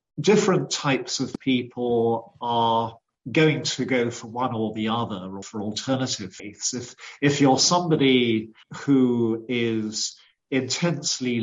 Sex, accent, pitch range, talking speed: male, British, 115-135 Hz, 125 wpm